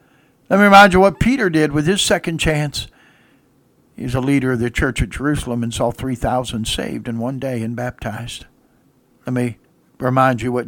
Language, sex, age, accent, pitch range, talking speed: English, male, 60-79, American, 120-155 Hz, 190 wpm